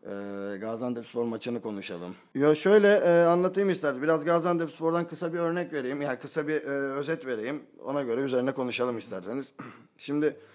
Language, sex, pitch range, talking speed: Turkish, male, 105-145 Hz, 165 wpm